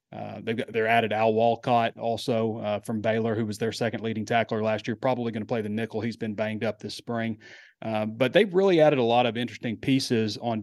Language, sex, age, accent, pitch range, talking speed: English, male, 30-49, American, 110-125 Hz, 235 wpm